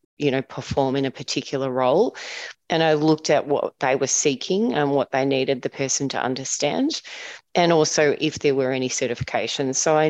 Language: English